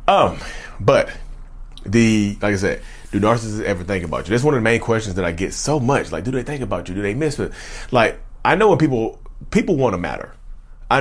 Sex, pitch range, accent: male, 95-115 Hz, American